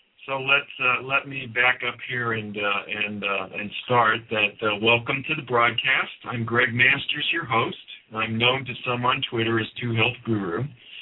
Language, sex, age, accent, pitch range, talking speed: English, male, 50-69, American, 110-125 Hz, 190 wpm